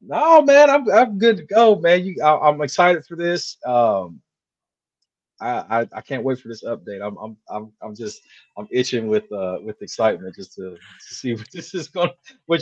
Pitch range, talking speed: 120-165 Hz, 205 wpm